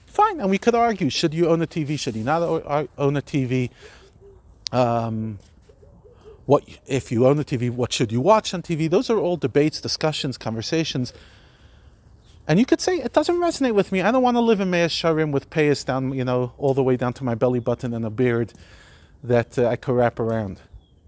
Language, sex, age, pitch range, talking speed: English, male, 40-59, 105-165 Hz, 215 wpm